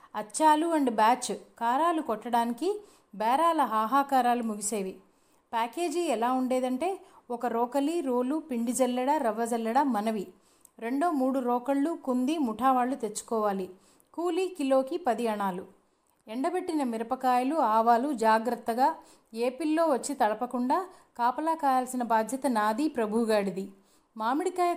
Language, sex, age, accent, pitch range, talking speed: Telugu, female, 30-49, native, 230-295 Hz, 100 wpm